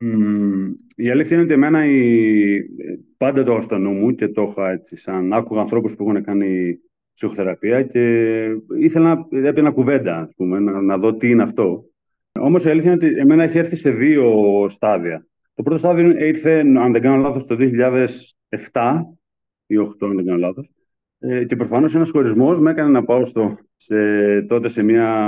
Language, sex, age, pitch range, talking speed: Greek, male, 40-59, 105-155 Hz, 180 wpm